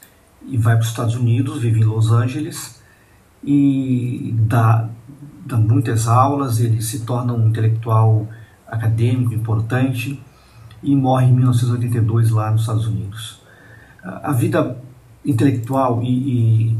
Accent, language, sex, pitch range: Brazilian, Portuguese, male, 115-125 Hz